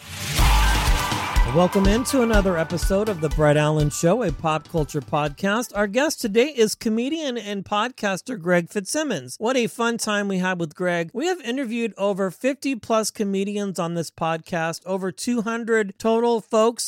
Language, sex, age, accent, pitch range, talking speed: English, male, 40-59, American, 175-230 Hz, 155 wpm